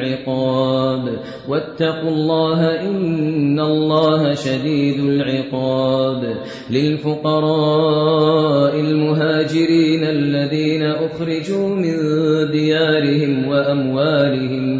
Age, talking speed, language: 30-49, 55 wpm, Urdu